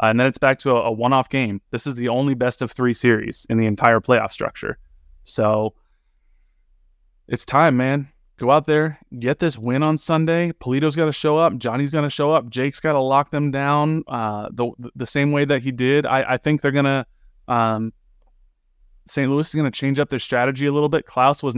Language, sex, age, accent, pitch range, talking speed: English, male, 20-39, American, 115-140 Hz, 225 wpm